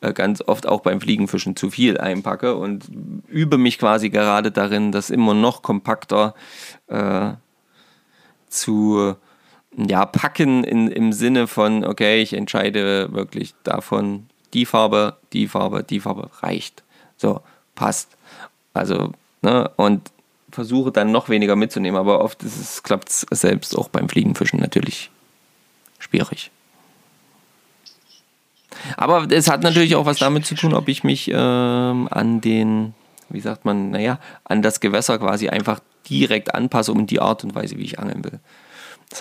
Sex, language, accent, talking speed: male, German, German, 145 wpm